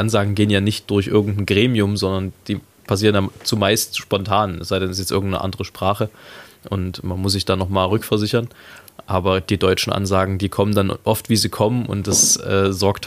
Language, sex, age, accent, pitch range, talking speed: German, male, 20-39, German, 95-110 Hz, 200 wpm